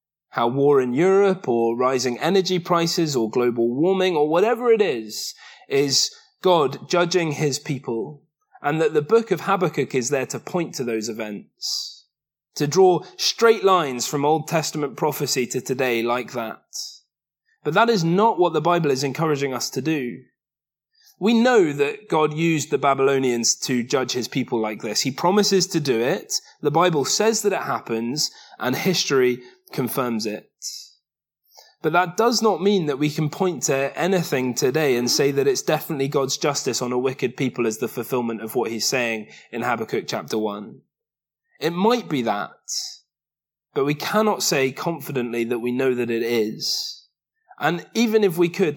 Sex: male